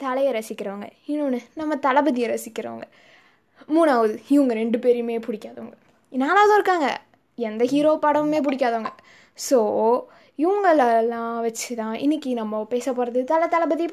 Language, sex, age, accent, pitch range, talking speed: Tamil, female, 20-39, native, 235-300 Hz, 115 wpm